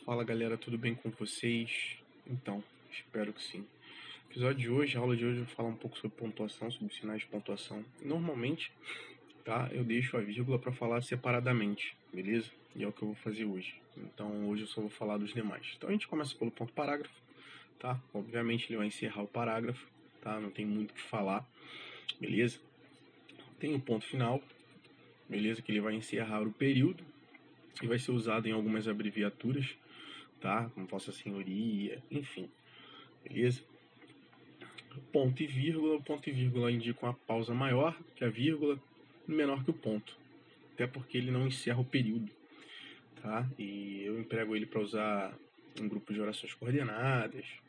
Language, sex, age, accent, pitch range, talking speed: Portuguese, male, 20-39, Brazilian, 110-130 Hz, 170 wpm